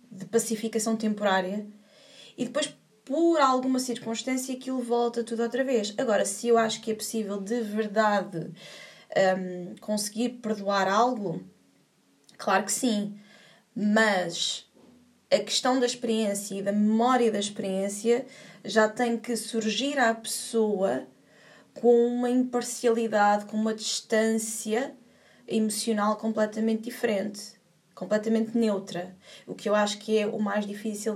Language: Portuguese